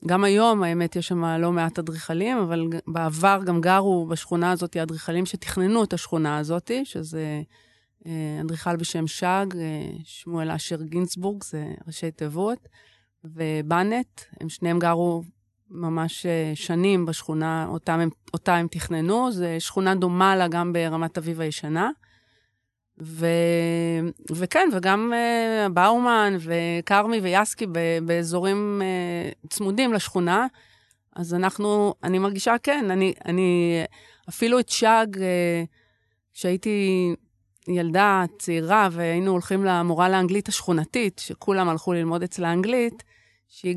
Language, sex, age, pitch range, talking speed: Hebrew, female, 30-49, 165-195 Hz, 115 wpm